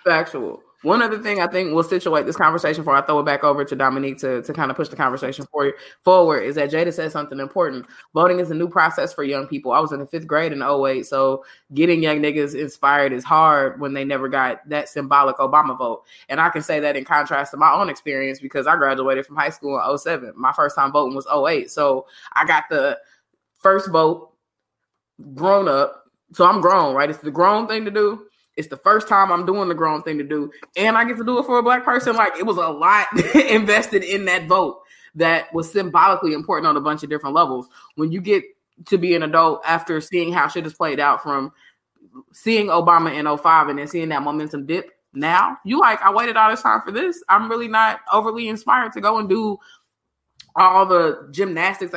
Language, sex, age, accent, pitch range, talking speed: English, female, 20-39, American, 145-195 Hz, 225 wpm